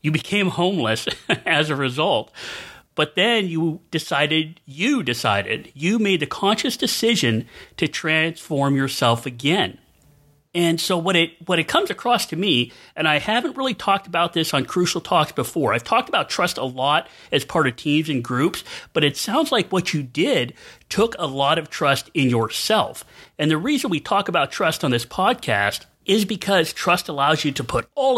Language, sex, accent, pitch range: English, male, American, 140-185 Hz